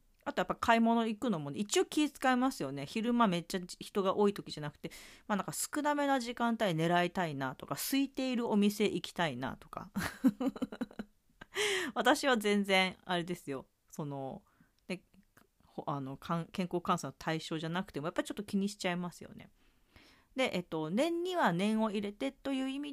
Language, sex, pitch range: Japanese, female, 160-230 Hz